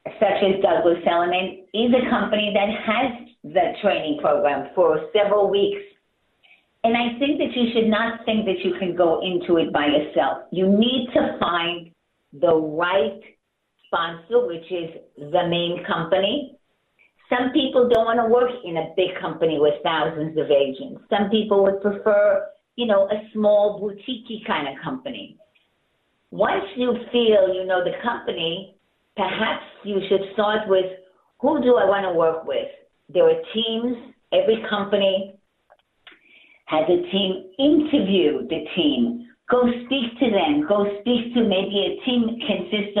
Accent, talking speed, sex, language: American, 155 wpm, female, English